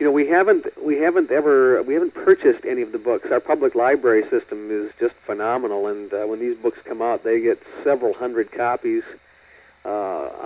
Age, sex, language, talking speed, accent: 50-69, male, English, 195 wpm, American